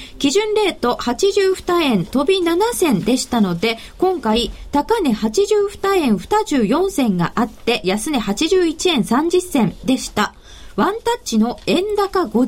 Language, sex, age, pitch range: Japanese, female, 20-39, 240-370 Hz